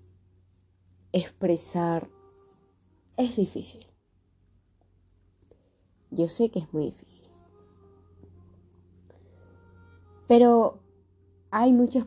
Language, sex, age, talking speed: Spanish, female, 20-39, 60 wpm